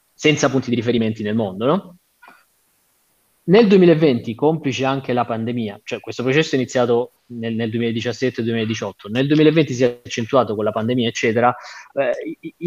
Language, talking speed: Italian, 145 wpm